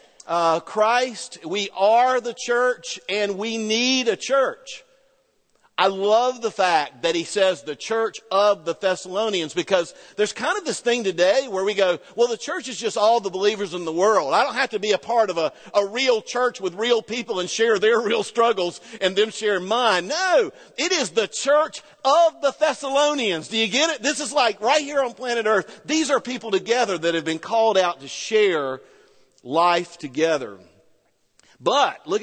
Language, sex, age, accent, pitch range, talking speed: English, male, 50-69, American, 180-250 Hz, 190 wpm